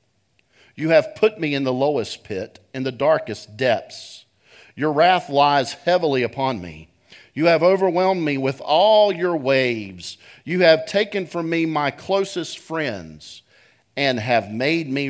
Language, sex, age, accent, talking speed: English, male, 50-69, American, 150 wpm